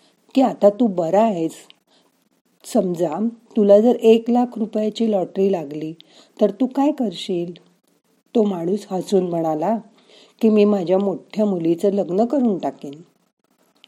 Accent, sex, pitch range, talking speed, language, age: native, female, 170-225 Hz, 125 wpm, Marathi, 40-59